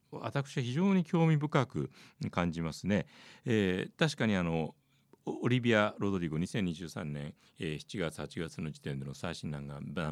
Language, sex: Japanese, male